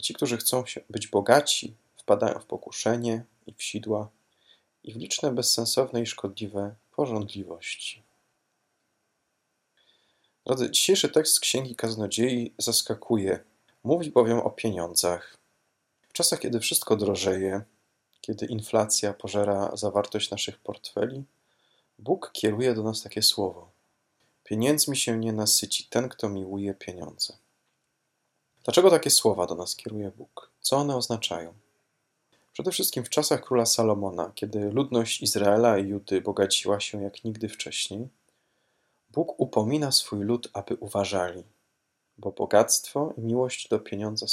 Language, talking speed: Polish, 125 wpm